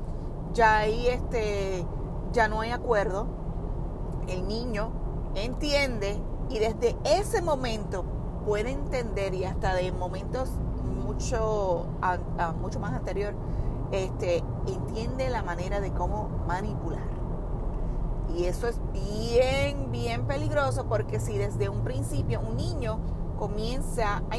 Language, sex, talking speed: Spanish, female, 120 wpm